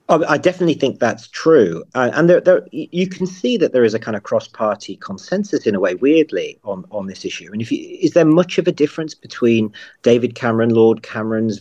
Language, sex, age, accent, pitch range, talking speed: English, male, 40-59, British, 105-150 Hz, 225 wpm